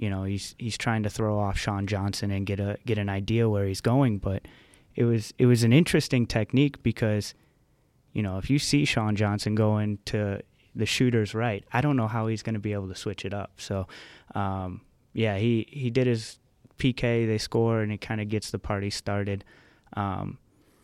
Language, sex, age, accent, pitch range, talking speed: English, male, 20-39, American, 100-115 Hz, 205 wpm